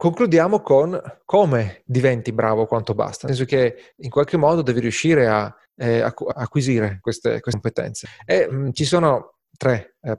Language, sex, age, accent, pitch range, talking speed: Italian, male, 30-49, native, 120-160 Hz, 165 wpm